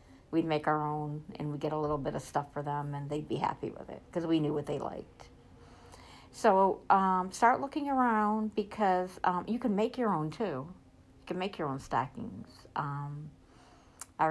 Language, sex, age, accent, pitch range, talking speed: English, female, 60-79, American, 150-185 Hz, 195 wpm